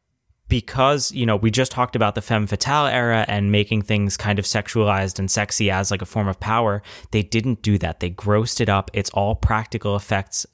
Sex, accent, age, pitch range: male, American, 20-39, 95-115 Hz